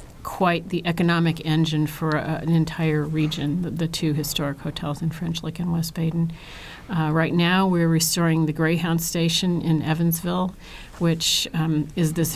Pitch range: 155-170 Hz